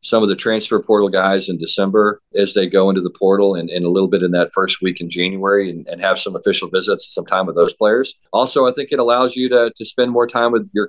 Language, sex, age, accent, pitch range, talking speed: English, male, 40-59, American, 95-120 Hz, 270 wpm